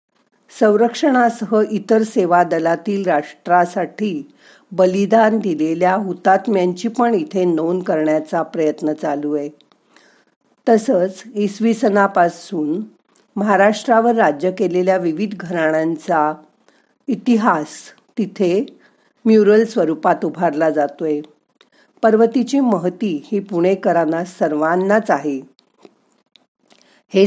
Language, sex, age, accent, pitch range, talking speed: Marathi, female, 50-69, native, 170-225 Hz, 80 wpm